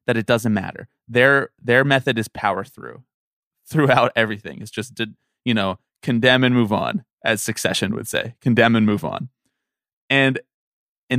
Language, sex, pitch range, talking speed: English, male, 105-135 Hz, 165 wpm